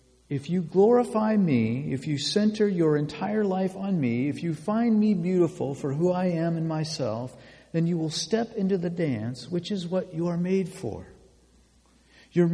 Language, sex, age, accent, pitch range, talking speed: English, male, 50-69, American, 125-175 Hz, 180 wpm